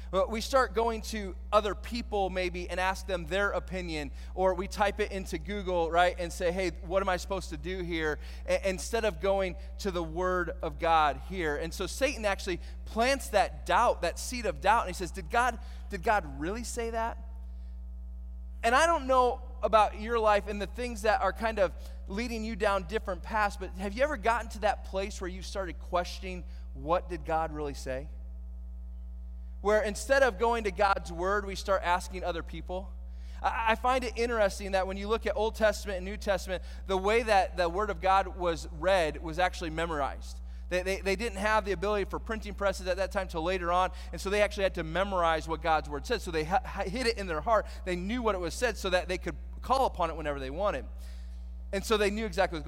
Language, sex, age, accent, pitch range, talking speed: English, male, 30-49, American, 150-205 Hz, 220 wpm